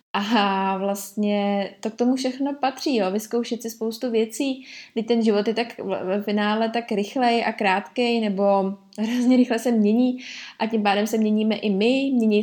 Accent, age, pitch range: native, 20-39, 205-230 Hz